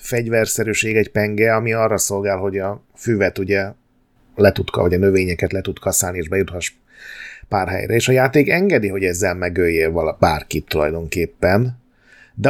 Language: Hungarian